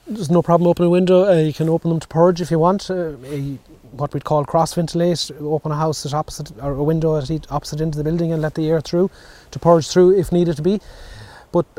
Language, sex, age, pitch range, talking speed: English, male, 30-49, 140-175 Hz, 240 wpm